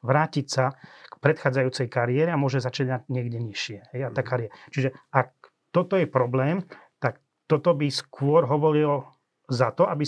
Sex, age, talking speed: male, 30-49, 145 wpm